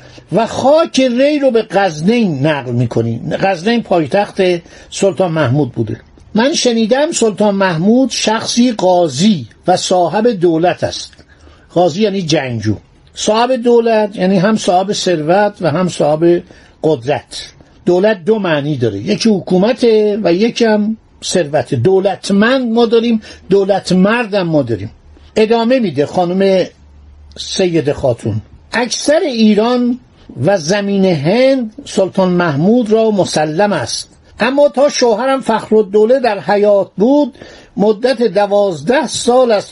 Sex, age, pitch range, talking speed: male, 60-79, 170-230 Hz, 120 wpm